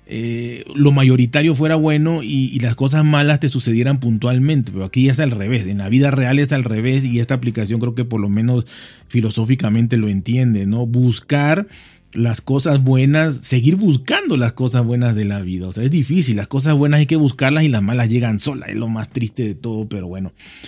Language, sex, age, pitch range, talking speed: Spanish, male, 40-59, 110-135 Hz, 210 wpm